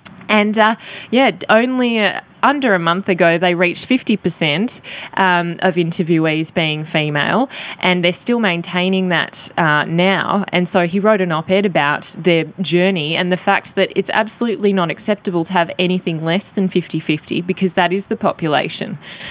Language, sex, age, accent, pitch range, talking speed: English, female, 10-29, Australian, 165-195 Hz, 160 wpm